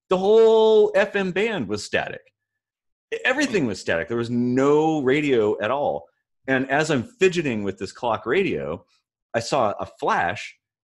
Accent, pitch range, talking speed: American, 95-135 Hz, 150 wpm